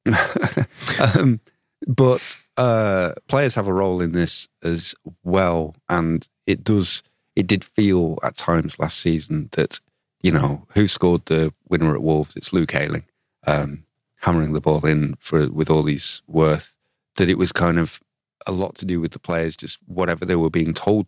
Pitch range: 80-105 Hz